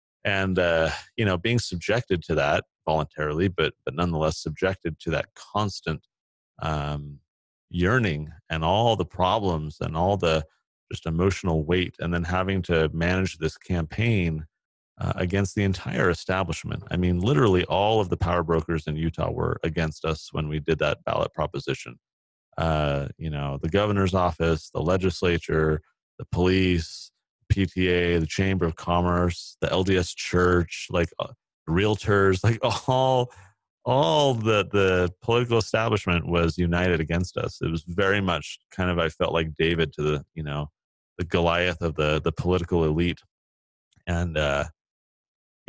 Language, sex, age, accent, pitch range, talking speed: English, male, 30-49, American, 80-95 Hz, 150 wpm